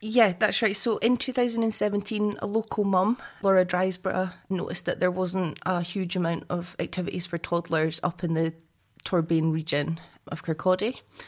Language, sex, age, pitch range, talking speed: English, female, 20-39, 165-195 Hz, 155 wpm